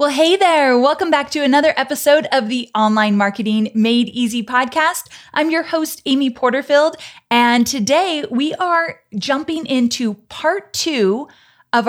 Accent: American